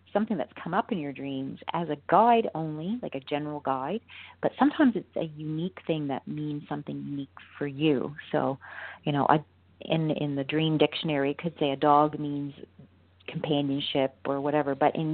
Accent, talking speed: American, 185 wpm